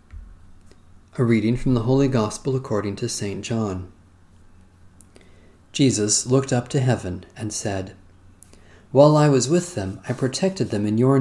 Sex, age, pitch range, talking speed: male, 40-59, 95-130 Hz, 145 wpm